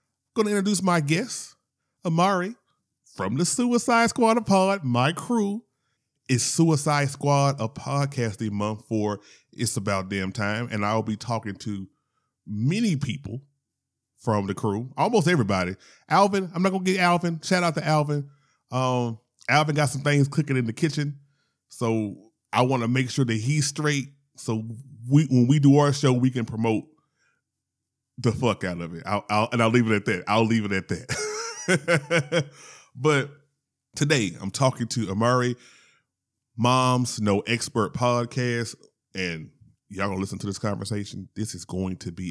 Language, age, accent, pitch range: English, 30-49, American, 110-150 Hz